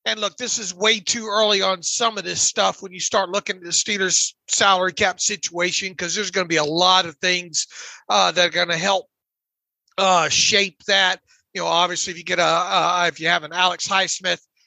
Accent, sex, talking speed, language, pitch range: American, male, 220 wpm, English, 180-215 Hz